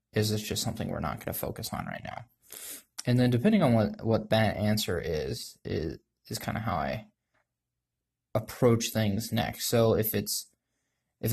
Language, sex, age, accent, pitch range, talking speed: English, male, 20-39, American, 105-120 Hz, 180 wpm